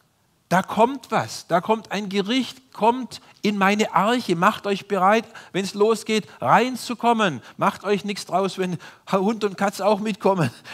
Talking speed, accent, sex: 155 wpm, German, male